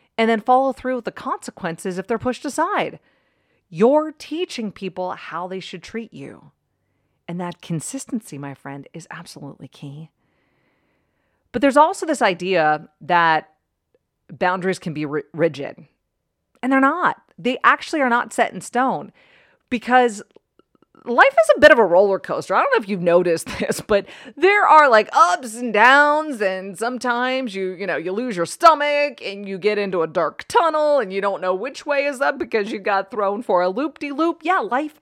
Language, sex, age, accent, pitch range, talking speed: English, female, 40-59, American, 180-275 Hz, 175 wpm